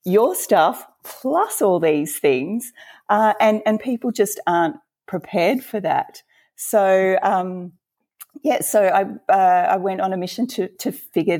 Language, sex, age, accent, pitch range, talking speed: English, female, 30-49, Australian, 170-220 Hz, 155 wpm